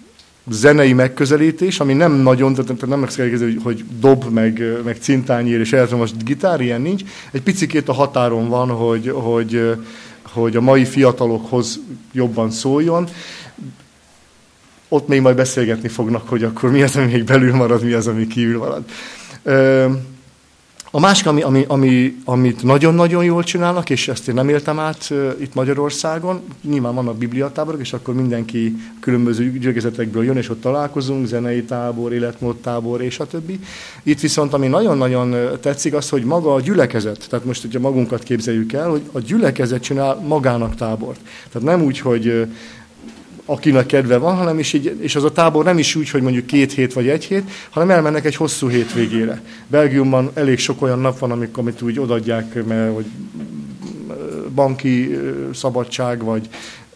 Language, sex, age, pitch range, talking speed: Hungarian, male, 40-59, 120-145 Hz, 160 wpm